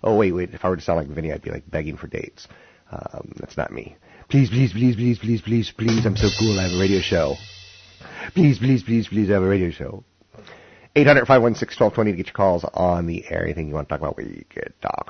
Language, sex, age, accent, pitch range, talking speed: English, male, 30-49, American, 80-100 Hz, 265 wpm